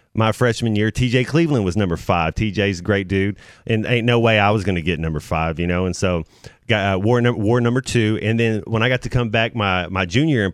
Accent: American